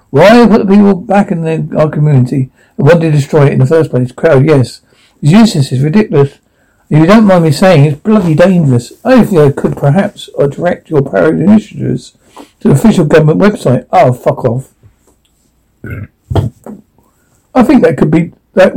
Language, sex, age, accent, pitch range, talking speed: English, male, 60-79, British, 135-185 Hz, 180 wpm